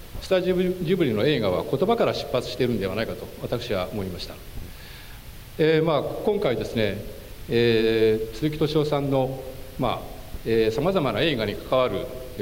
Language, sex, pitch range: Japanese, male, 100-155 Hz